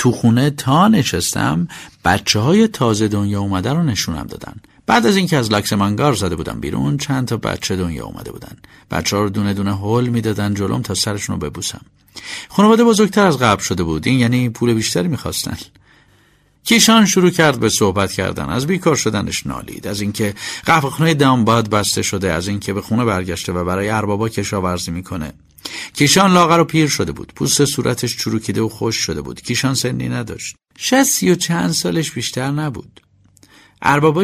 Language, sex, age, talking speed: Persian, male, 50-69, 170 wpm